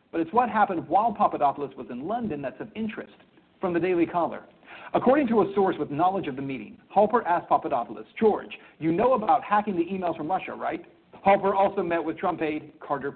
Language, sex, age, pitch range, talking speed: English, male, 50-69, 155-215 Hz, 205 wpm